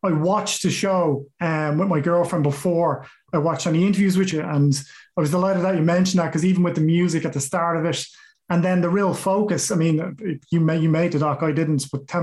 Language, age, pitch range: English, 30-49, 165-200 Hz